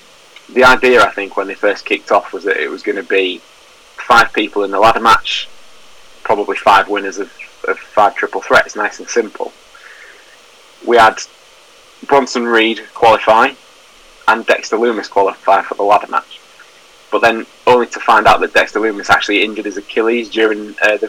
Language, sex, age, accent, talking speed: English, male, 20-39, British, 175 wpm